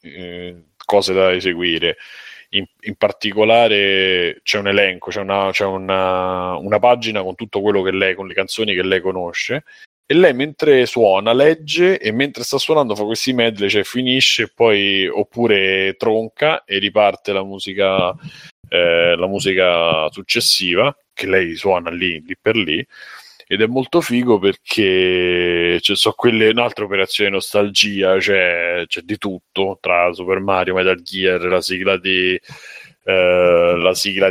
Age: 30-49